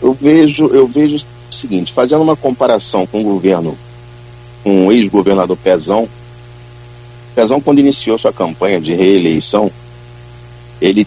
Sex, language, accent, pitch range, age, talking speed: male, Portuguese, Brazilian, 110-120 Hz, 40-59, 130 wpm